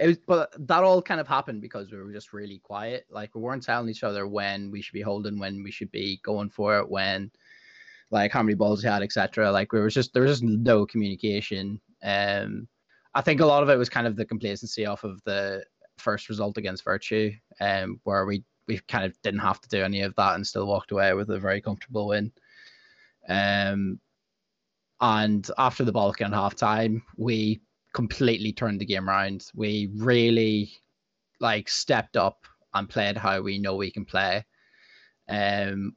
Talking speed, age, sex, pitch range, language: 200 wpm, 20-39, male, 100-115 Hz, English